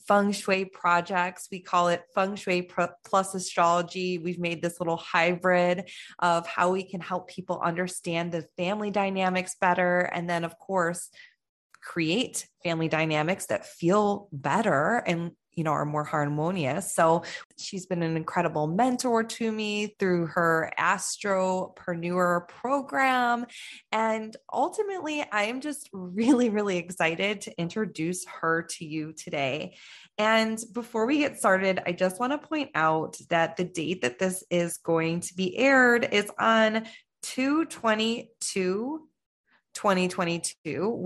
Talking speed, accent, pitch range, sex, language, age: 135 wpm, American, 170-205 Hz, female, English, 20-39